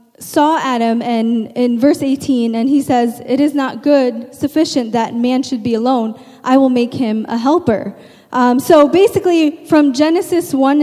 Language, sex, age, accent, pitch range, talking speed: English, female, 10-29, American, 245-300 Hz, 170 wpm